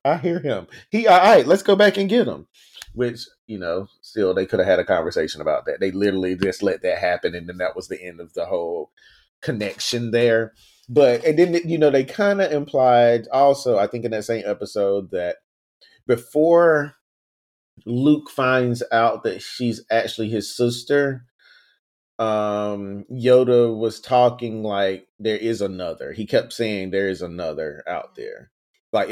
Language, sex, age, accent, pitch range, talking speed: English, male, 30-49, American, 105-145 Hz, 175 wpm